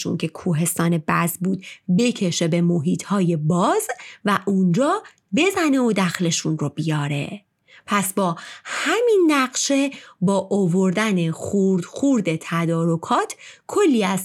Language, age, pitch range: Persian, 30-49, 175-275 Hz